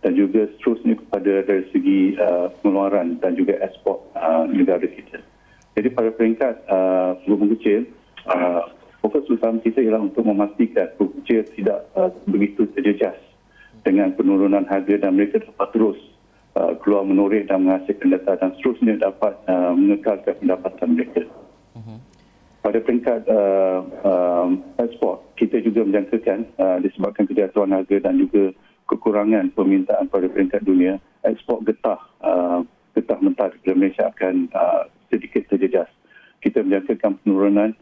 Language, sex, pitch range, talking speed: Malay, male, 95-110 Hz, 135 wpm